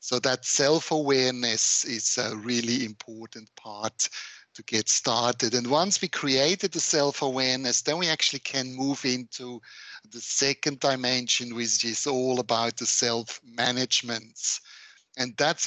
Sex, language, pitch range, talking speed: male, English, 115-130 Hz, 130 wpm